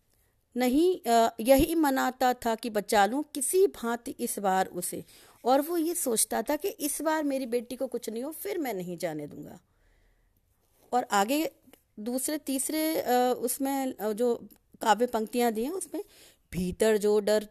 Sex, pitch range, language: female, 200-275 Hz, Hindi